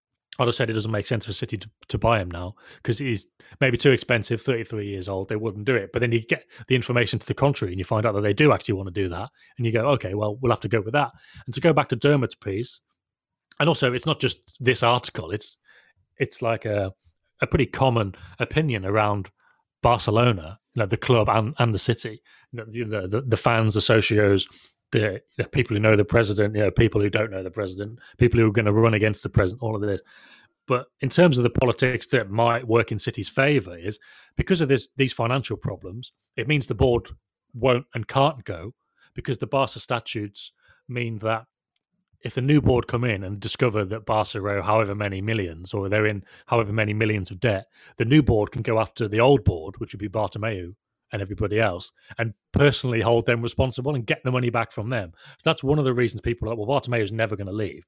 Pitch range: 105-125 Hz